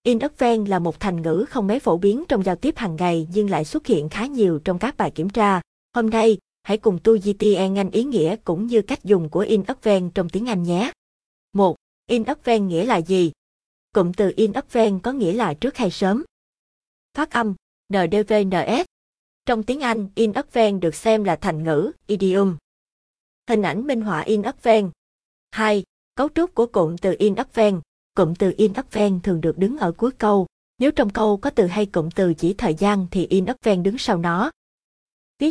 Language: Vietnamese